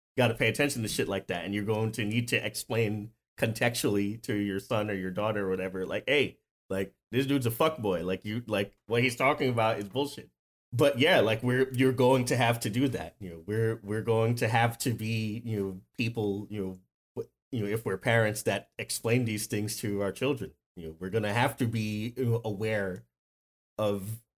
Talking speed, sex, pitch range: 215 wpm, male, 100-125 Hz